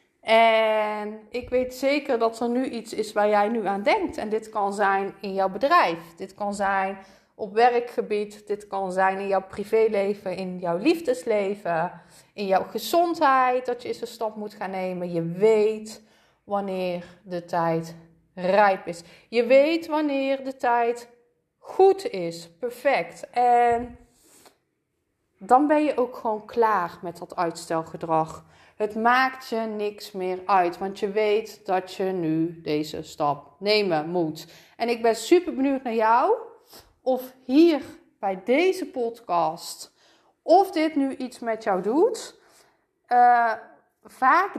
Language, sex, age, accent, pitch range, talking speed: Dutch, female, 30-49, Dutch, 190-250 Hz, 145 wpm